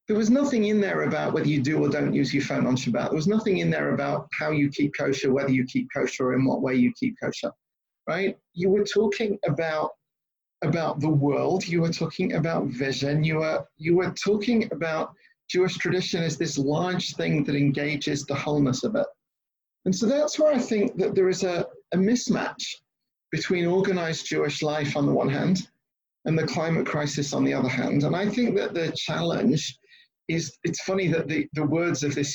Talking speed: 200 wpm